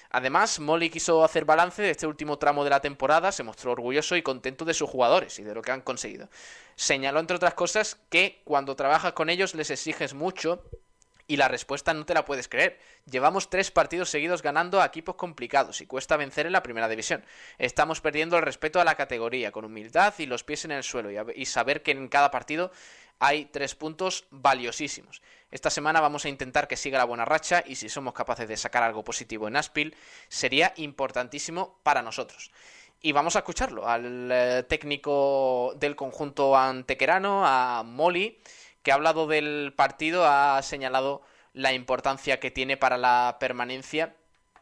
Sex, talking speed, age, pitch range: male, 180 wpm, 20-39, 130-160 Hz